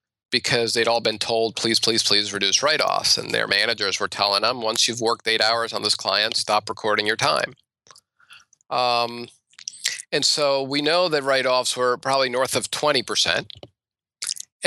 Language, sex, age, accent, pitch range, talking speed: English, male, 40-59, American, 110-150 Hz, 165 wpm